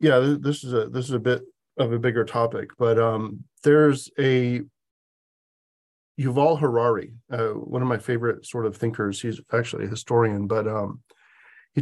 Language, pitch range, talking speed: English, 115-145 Hz, 170 wpm